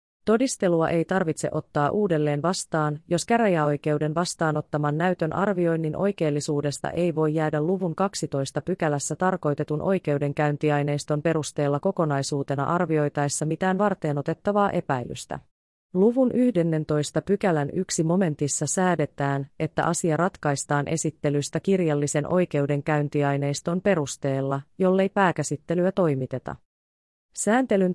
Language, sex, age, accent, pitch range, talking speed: Finnish, female, 30-49, native, 145-185 Hz, 90 wpm